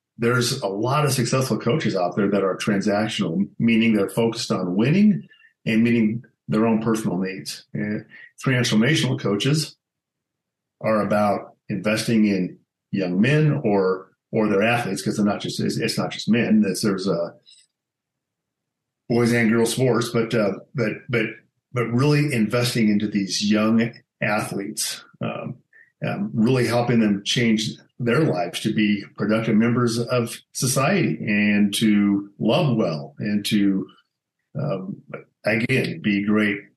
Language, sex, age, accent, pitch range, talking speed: English, male, 50-69, American, 105-120 Hz, 140 wpm